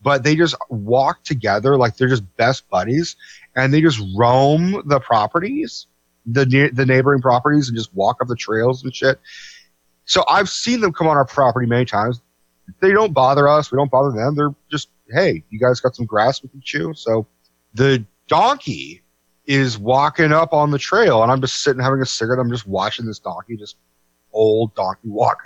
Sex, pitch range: male, 105-140 Hz